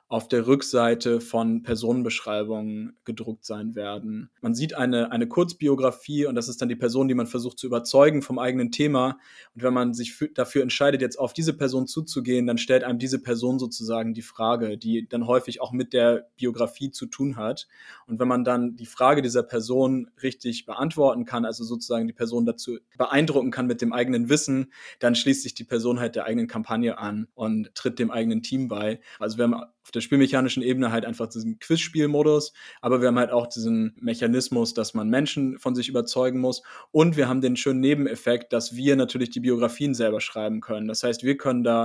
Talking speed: 200 wpm